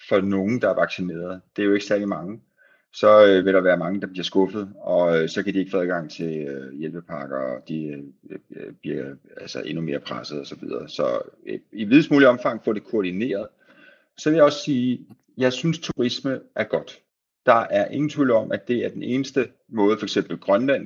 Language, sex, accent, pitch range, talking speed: Danish, male, native, 85-110 Hz, 220 wpm